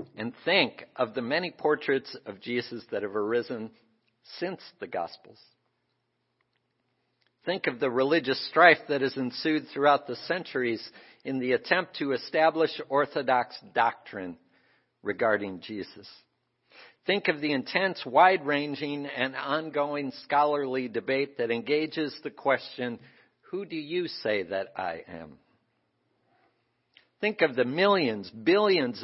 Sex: male